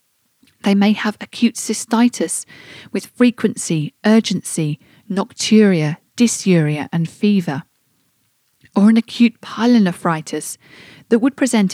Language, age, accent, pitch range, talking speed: English, 40-59, British, 170-220 Hz, 95 wpm